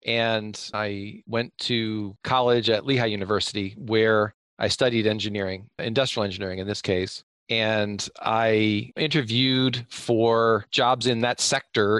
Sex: male